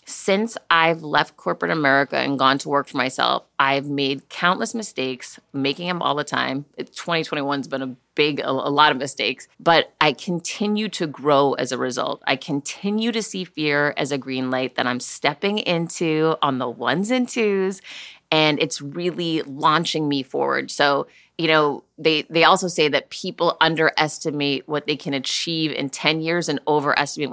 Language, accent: English, American